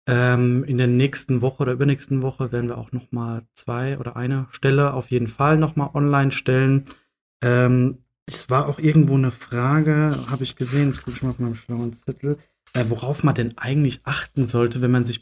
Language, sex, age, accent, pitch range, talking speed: German, male, 30-49, German, 120-140 Hz, 205 wpm